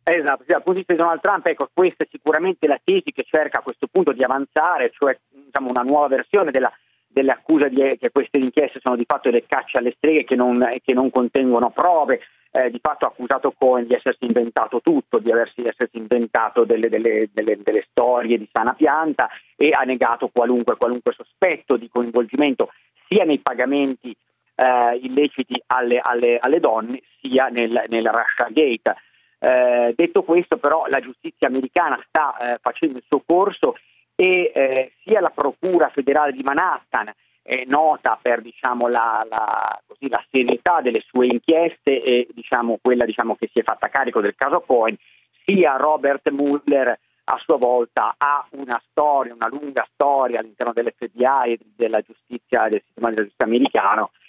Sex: male